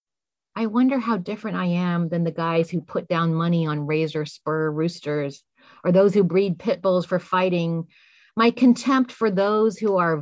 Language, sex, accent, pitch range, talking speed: English, female, American, 165-200 Hz, 180 wpm